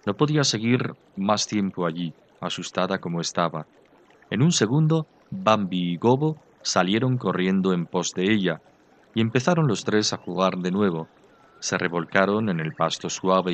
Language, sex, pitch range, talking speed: Spanish, male, 90-135 Hz, 155 wpm